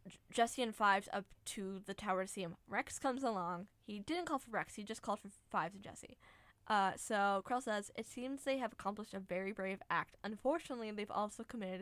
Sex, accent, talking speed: female, American, 215 wpm